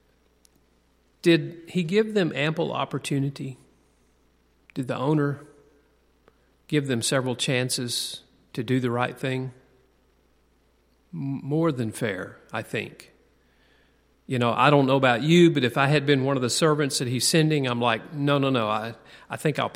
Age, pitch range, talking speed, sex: 40-59, 120-170 Hz, 155 wpm, male